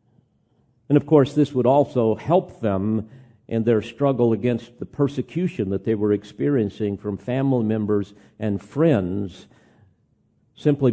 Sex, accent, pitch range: male, American, 110-140 Hz